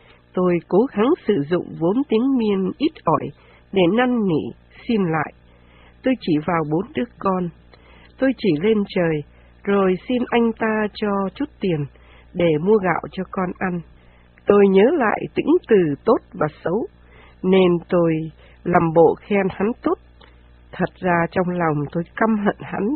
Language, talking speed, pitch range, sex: Vietnamese, 160 wpm, 155-215 Hz, female